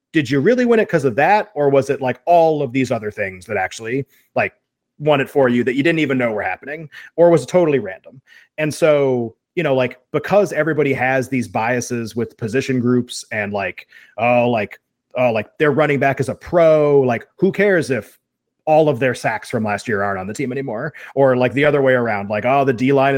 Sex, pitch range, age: male, 120-150 Hz, 30-49